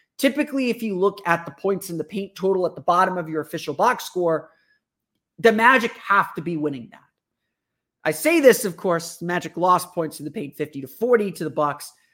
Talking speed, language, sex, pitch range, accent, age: 215 wpm, English, male, 165-235 Hz, American, 30-49